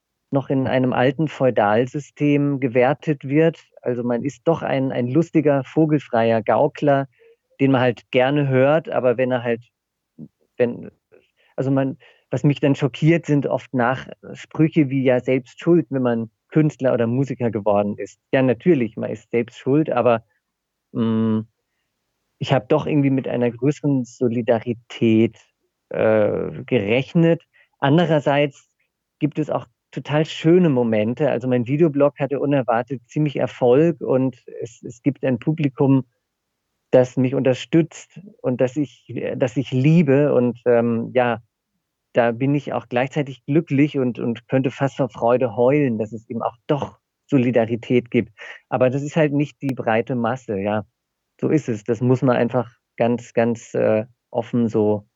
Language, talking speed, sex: German, 150 wpm, male